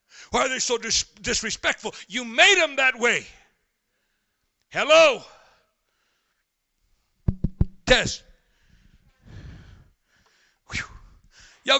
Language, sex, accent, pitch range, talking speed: English, male, American, 230-320 Hz, 70 wpm